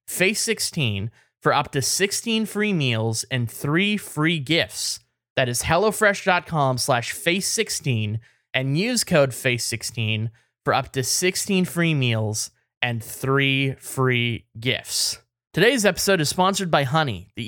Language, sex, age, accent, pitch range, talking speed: English, male, 20-39, American, 115-160 Hz, 135 wpm